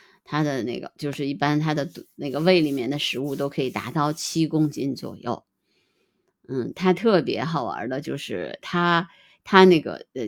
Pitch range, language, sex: 145-180 Hz, Chinese, female